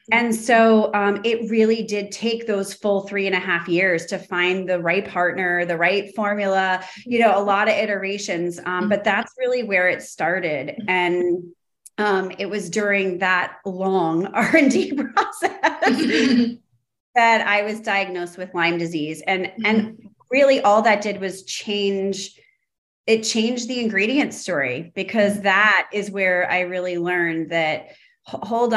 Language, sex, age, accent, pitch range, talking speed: English, female, 30-49, American, 180-225 Hz, 150 wpm